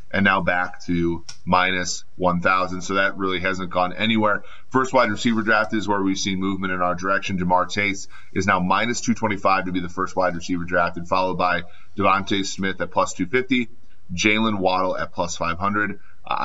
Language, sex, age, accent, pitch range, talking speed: English, male, 30-49, American, 90-105 Hz, 180 wpm